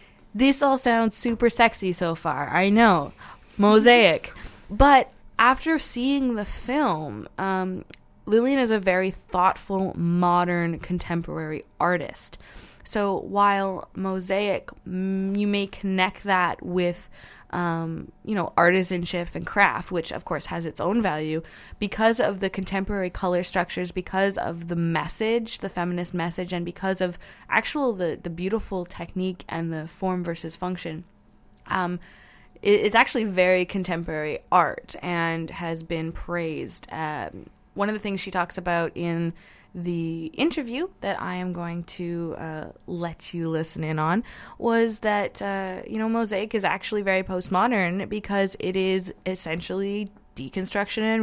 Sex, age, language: female, 20-39, English